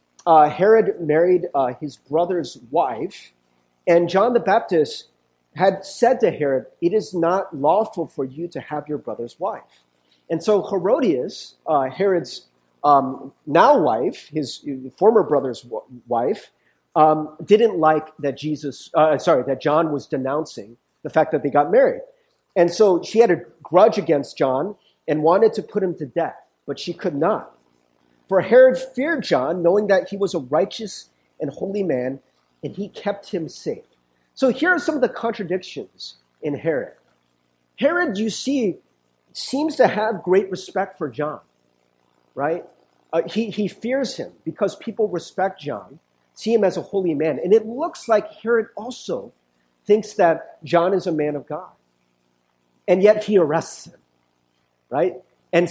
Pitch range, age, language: 140-215 Hz, 40-59, English